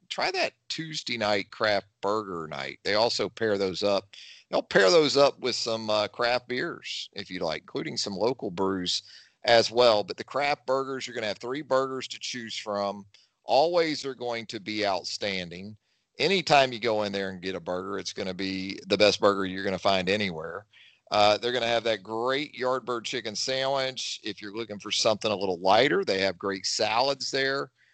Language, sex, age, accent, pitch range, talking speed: English, male, 40-59, American, 100-130 Hz, 200 wpm